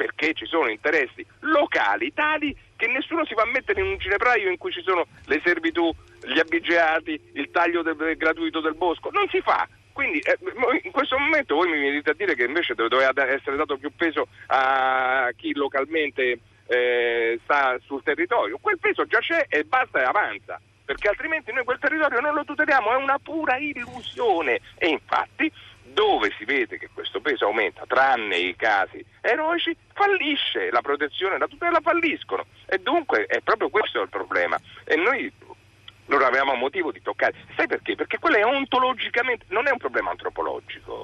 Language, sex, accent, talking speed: Italian, male, native, 175 wpm